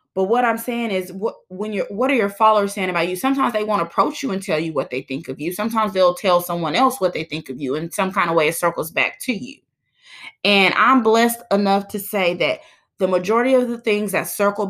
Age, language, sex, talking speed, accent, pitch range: 20-39, English, female, 255 wpm, American, 180-230 Hz